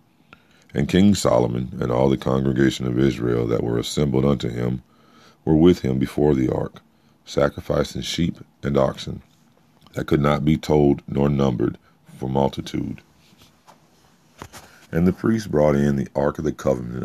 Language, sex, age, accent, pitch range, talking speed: English, male, 50-69, American, 65-80 Hz, 150 wpm